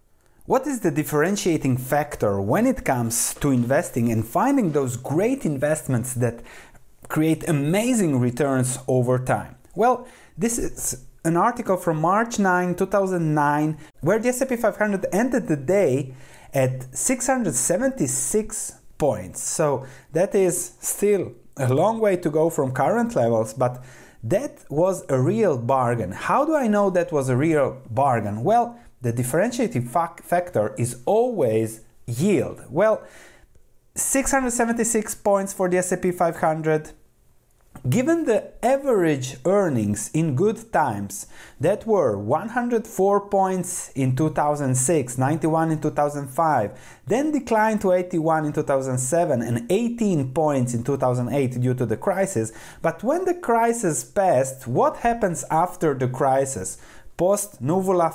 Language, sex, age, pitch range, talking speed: English, male, 30-49, 130-200 Hz, 130 wpm